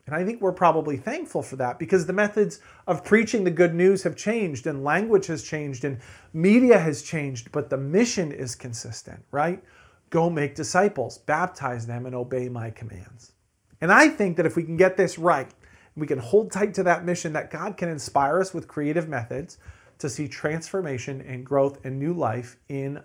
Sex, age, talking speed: male, 40-59, 195 wpm